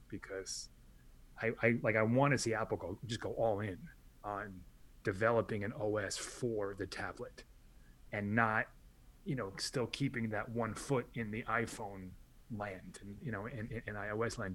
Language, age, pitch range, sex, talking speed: English, 30-49, 105-135 Hz, male, 175 wpm